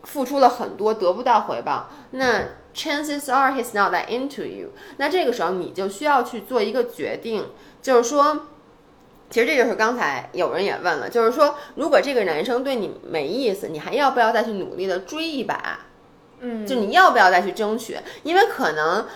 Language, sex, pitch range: Chinese, female, 220-285 Hz